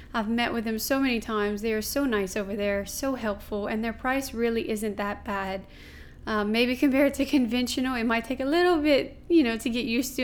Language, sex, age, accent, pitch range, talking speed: English, female, 30-49, American, 215-260 Hz, 230 wpm